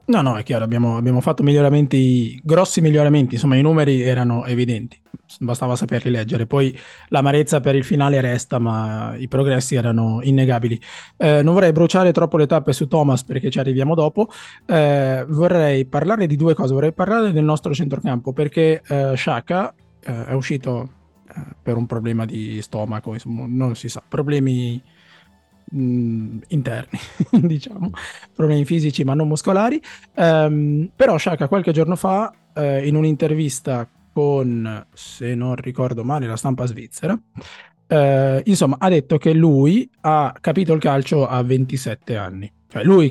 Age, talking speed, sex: 20-39, 150 wpm, male